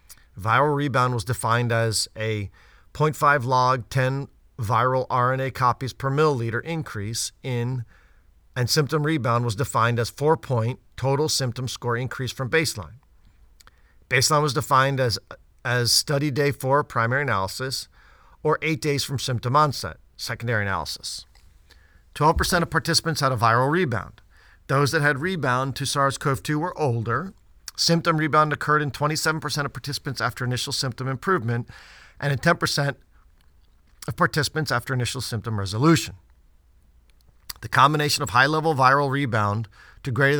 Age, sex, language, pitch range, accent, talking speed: 50-69, male, English, 110-140 Hz, American, 135 wpm